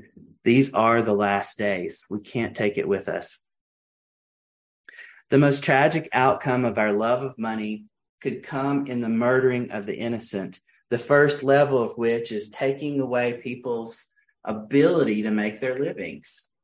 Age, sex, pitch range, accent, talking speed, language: 30-49, male, 110-135 Hz, American, 150 wpm, English